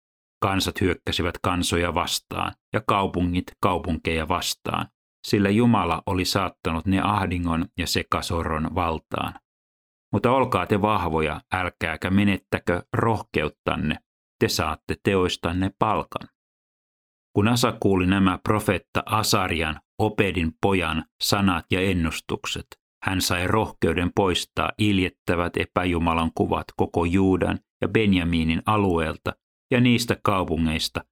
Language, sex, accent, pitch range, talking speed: Finnish, male, native, 80-100 Hz, 105 wpm